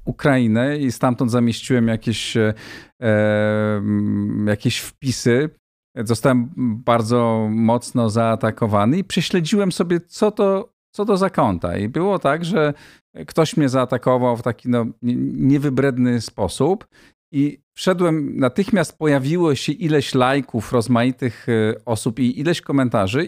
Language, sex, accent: Polish, male, native